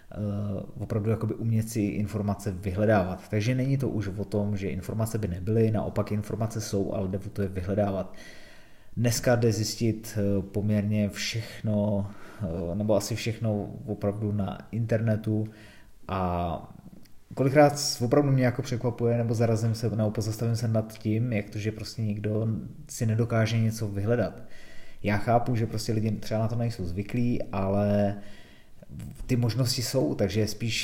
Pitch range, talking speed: 105-115 Hz, 145 wpm